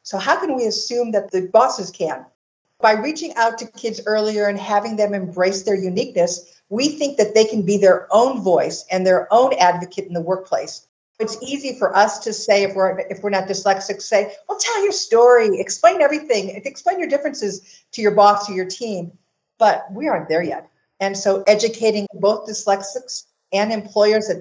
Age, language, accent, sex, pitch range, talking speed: 50-69, English, American, female, 190-230 Hz, 190 wpm